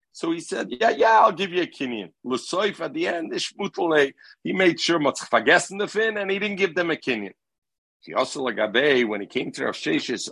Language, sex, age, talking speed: English, male, 50-69, 215 wpm